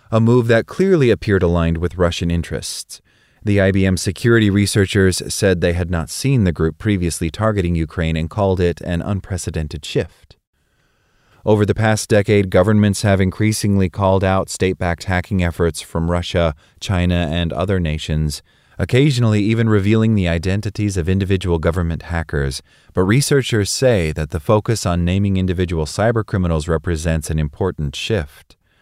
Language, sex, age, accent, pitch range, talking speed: English, male, 30-49, American, 80-105 Hz, 145 wpm